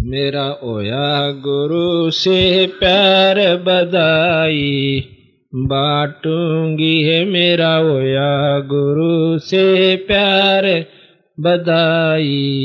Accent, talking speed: native, 65 wpm